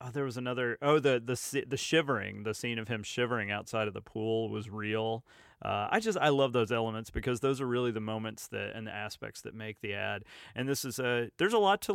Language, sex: English, male